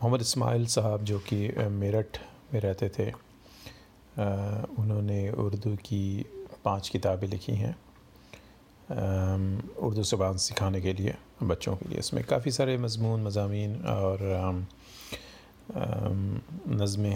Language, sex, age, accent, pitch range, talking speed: Hindi, male, 30-49, native, 100-125 Hz, 110 wpm